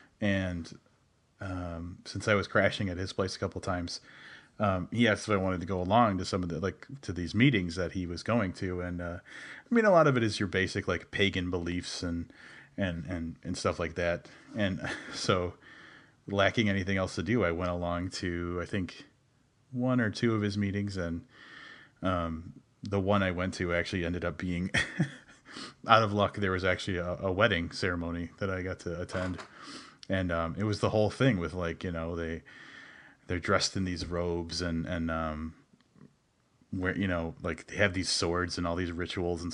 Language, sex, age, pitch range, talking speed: English, male, 30-49, 85-105 Hz, 205 wpm